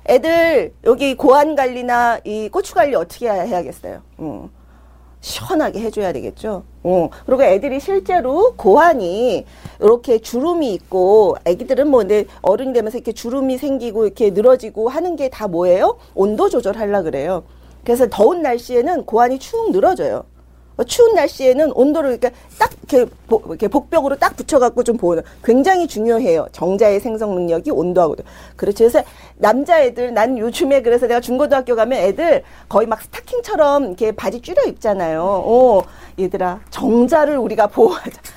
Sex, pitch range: female, 210-295 Hz